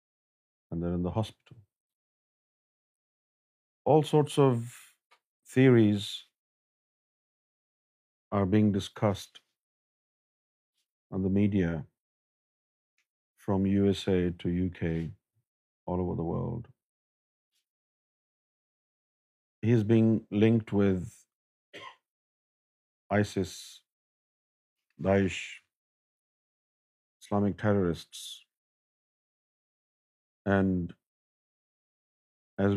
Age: 50-69